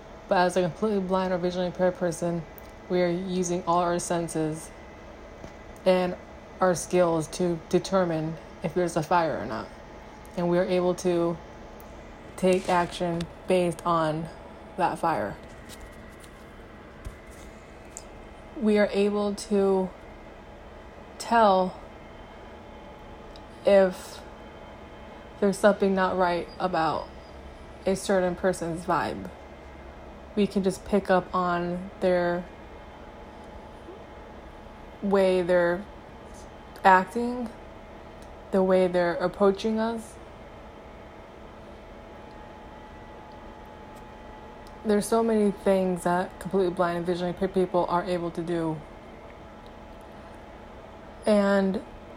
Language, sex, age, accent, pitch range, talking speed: English, female, 20-39, American, 175-195 Hz, 95 wpm